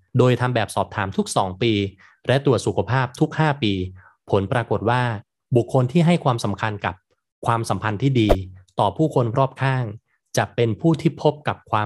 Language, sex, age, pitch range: Thai, male, 20-39, 100-130 Hz